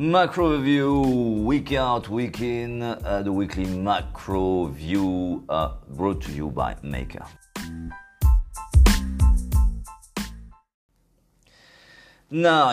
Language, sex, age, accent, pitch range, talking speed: French, male, 40-59, French, 75-100 Hz, 85 wpm